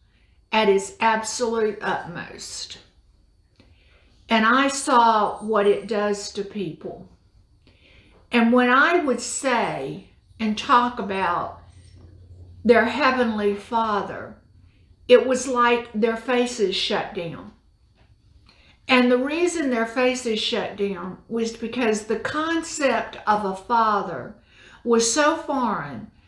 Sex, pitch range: female, 175-260 Hz